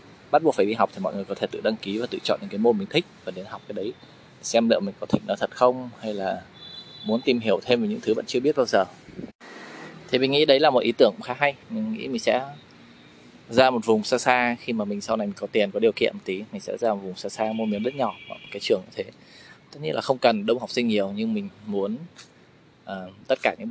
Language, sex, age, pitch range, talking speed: Vietnamese, male, 20-39, 105-135 Hz, 285 wpm